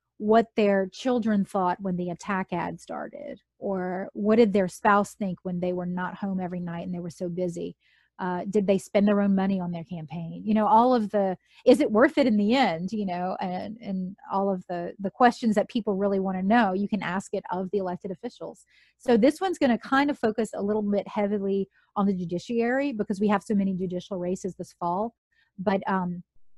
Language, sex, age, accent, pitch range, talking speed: English, female, 30-49, American, 180-210 Hz, 220 wpm